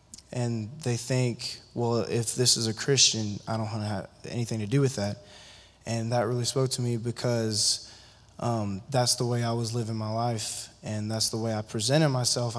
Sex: male